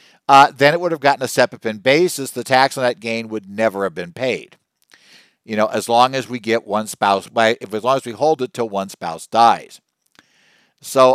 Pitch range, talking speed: 110-140 Hz, 220 wpm